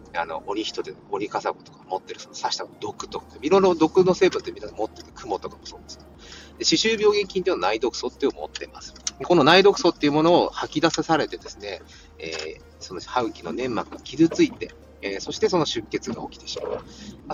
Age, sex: 40-59, male